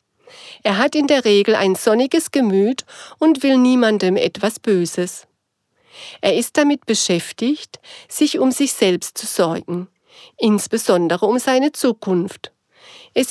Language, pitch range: German, 195-275 Hz